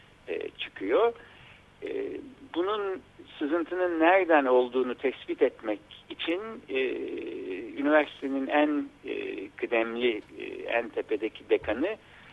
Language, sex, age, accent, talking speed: Turkish, male, 60-79, native, 90 wpm